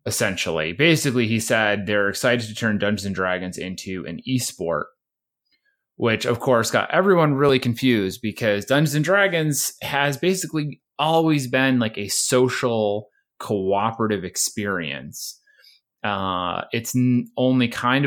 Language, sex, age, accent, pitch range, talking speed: English, male, 20-39, American, 105-140 Hz, 130 wpm